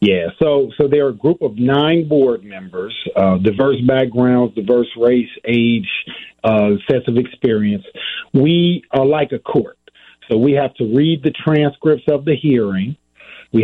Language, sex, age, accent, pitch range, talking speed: English, male, 50-69, American, 120-150 Hz, 165 wpm